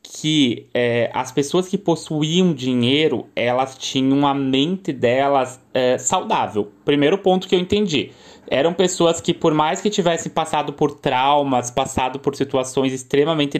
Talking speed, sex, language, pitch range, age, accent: 135 wpm, male, Portuguese, 130-170 Hz, 20-39, Brazilian